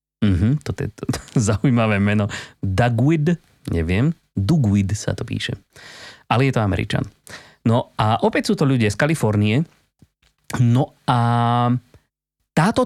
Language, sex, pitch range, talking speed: Slovak, male, 100-130 Hz, 125 wpm